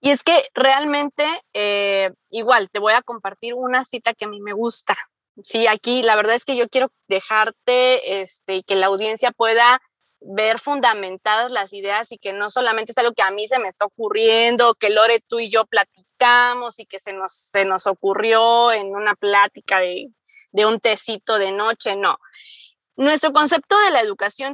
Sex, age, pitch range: female, 20-39, 215-280 Hz